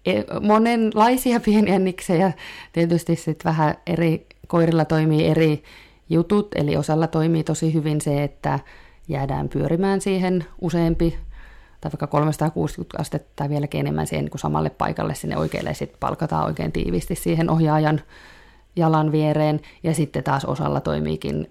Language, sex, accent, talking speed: Finnish, female, native, 130 wpm